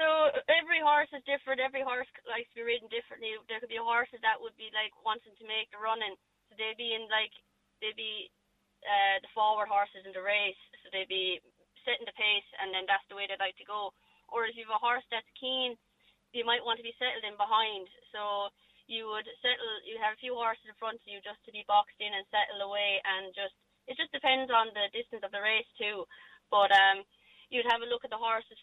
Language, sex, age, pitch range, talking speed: English, female, 20-39, 200-230 Hz, 235 wpm